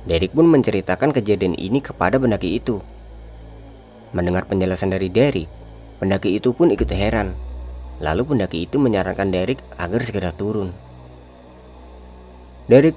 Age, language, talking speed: 20-39, Indonesian, 120 wpm